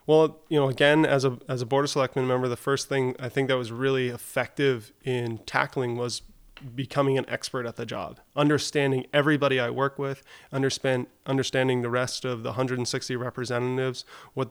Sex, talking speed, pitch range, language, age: male, 180 wpm, 120-140 Hz, English, 20-39